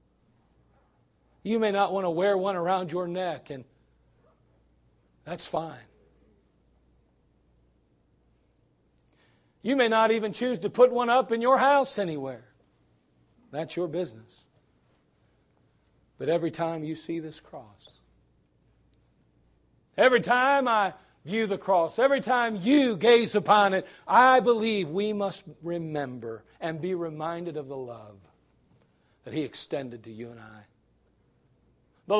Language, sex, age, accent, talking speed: English, male, 40-59, American, 125 wpm